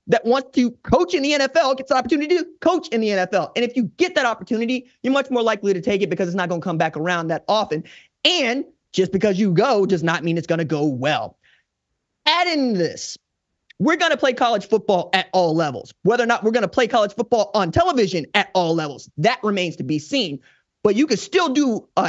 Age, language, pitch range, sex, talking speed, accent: 20-39, English, 185-255 Hz, male, 235 wpm, American